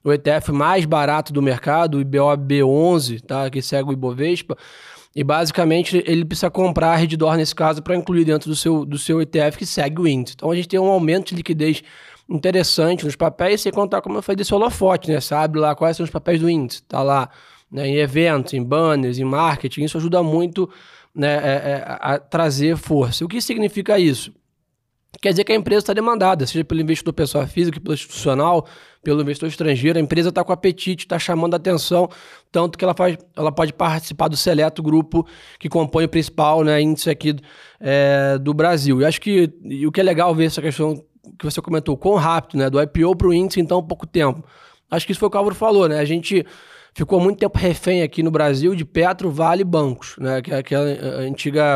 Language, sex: Portuguese, male